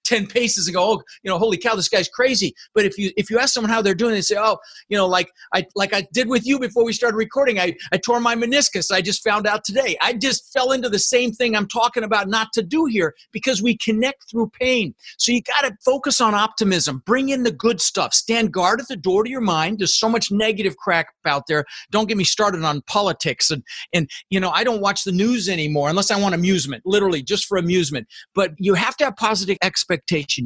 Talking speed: 245 wpm